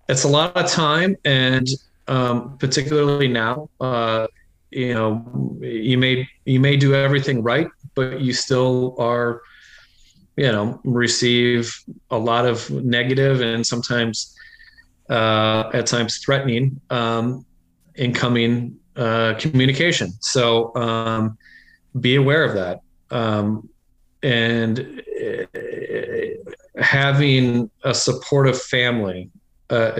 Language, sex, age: English, male, 30-49